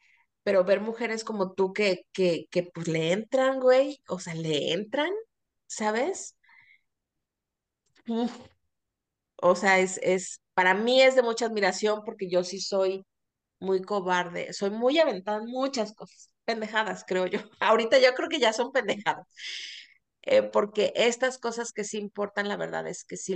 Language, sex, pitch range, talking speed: Spanish, female, 175-220 Hz, 160 wpm